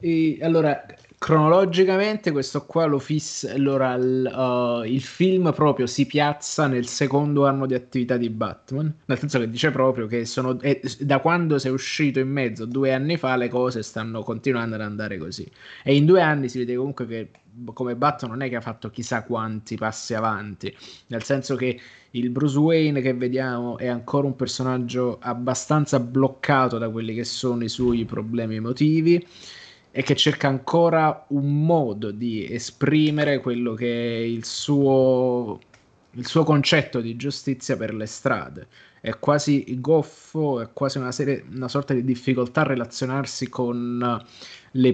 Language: Italian